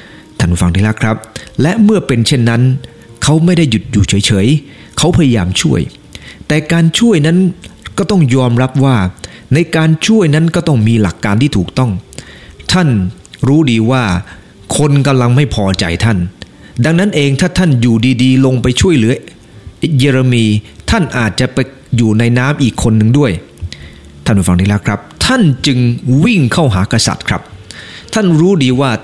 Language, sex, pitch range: English, male, 100-145 Hz